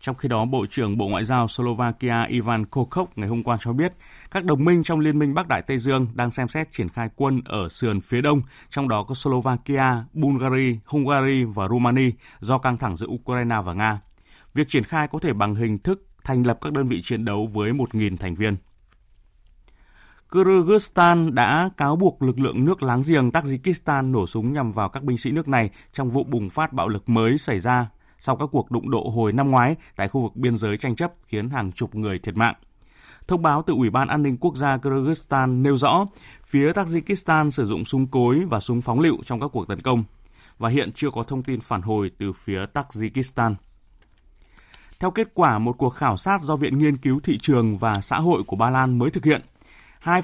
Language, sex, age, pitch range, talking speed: Vietnamese, male, 20-39, 110-145 Hz, 215 wpm